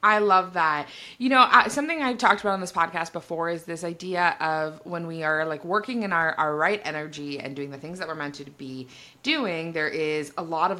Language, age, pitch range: English, 30-49, 155-205 Hz